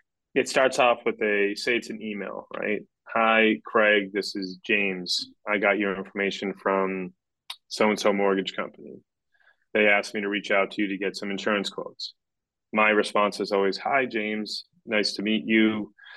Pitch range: 95-110 Hz